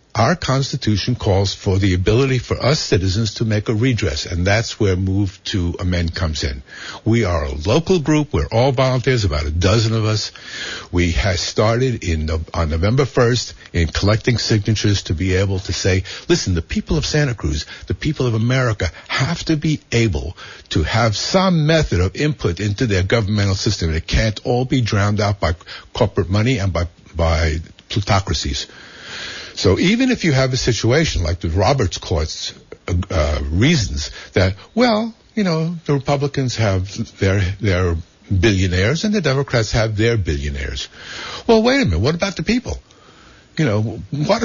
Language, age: English, 60-79